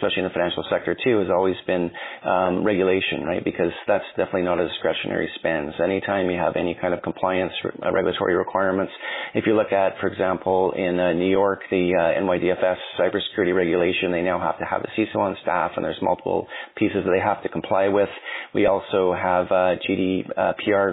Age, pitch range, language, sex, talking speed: 30-49, 90-100 Hz, English, male, 190 wpm